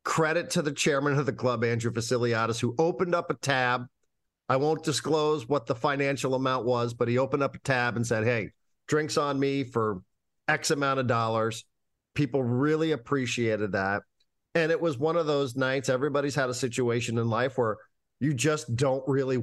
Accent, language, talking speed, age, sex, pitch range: American, English, 190 wpm, 50-69, male, 115-150 Hz